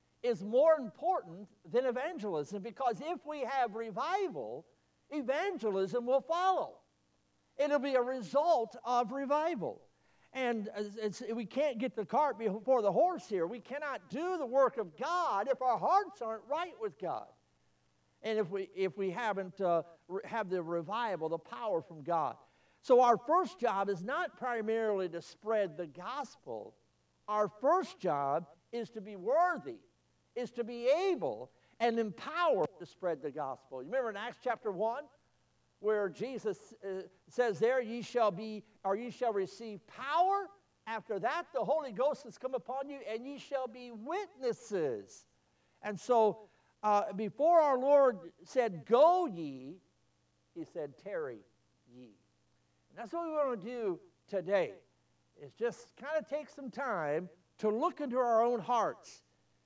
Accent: American